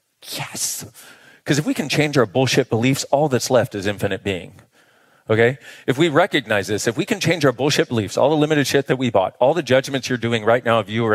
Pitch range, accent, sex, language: 105-135 Hz, American, male, English